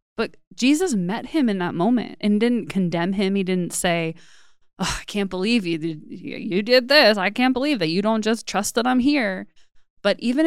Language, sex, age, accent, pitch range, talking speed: English, female, 20-39, American, 180-215 Hz, 195 wpm